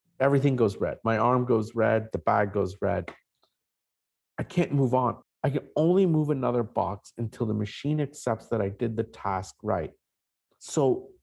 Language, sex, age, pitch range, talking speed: English, male, 50-69, 105-140 Hz, 170 wpm